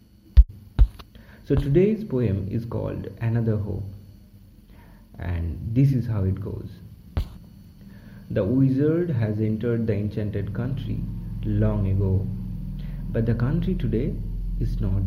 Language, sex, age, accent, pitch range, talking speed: Hindi, male, 30-49, native, 100-120 Hz, 110 wpm